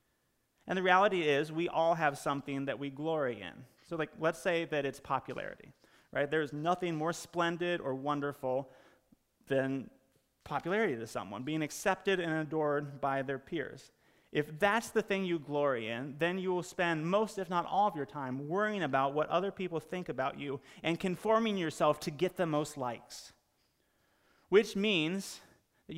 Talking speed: 170 wpm